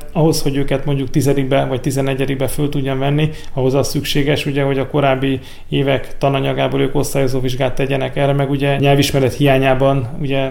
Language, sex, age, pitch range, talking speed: Hungarian, male, 30-49, 135-145 Hz, 165 wpm